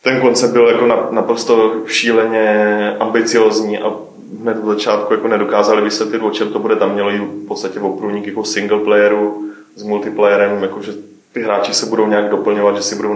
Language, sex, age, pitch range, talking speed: Czech, male, 20-39, 105-115 Hz, 170 wpm